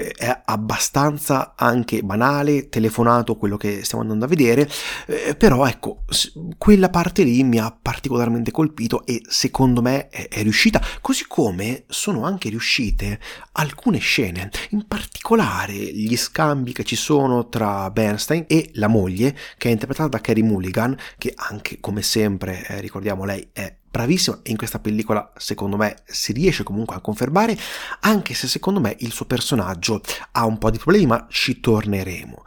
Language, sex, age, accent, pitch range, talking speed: Italian, male, 30-49, native, 110-150 Hz, 155 wpm